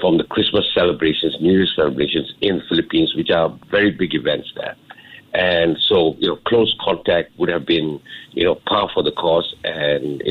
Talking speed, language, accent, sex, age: 190 wpm, English, Malaysian, male, 50-69